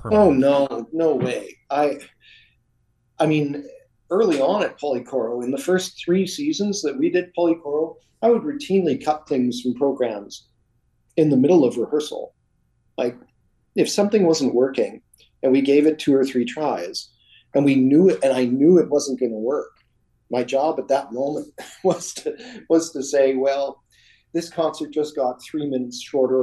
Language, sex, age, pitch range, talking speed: English, male, 50-69, 130-175 Hz, 170 wpm